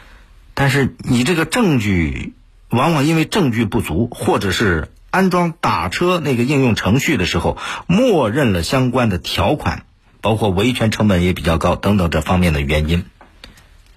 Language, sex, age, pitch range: Chinese, male, 50-69, 85-120 Hz